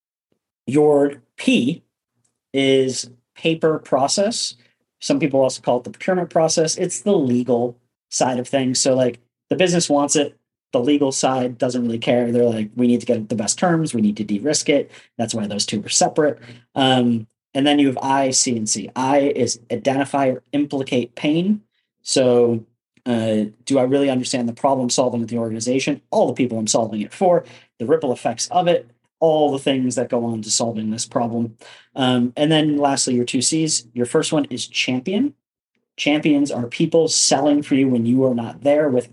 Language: English